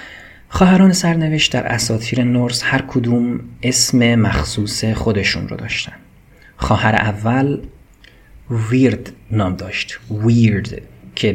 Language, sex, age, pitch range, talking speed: Persian, male, 30-49, 100-125 Hz, 100 wpm